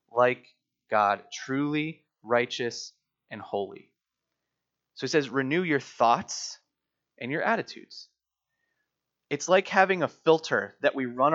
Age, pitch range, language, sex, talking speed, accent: 20-39, 135-175 Hz, English, male, 120 wpm, American